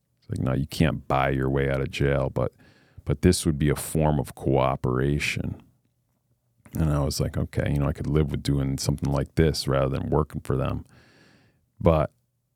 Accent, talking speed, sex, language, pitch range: American, 190 wpm, male, English, 70-85 Hz